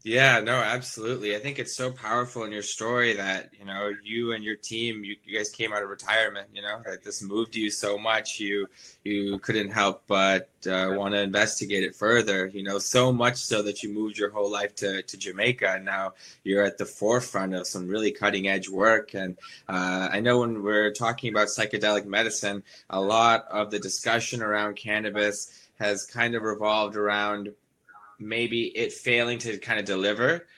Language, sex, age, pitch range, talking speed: English, male, 20-39, 100-115 Hz, 195 wpm